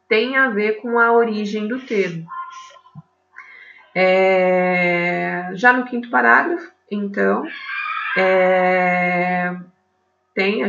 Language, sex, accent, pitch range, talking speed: Portuguese, female, Brazilian, 175-230 Hz, 80 wpm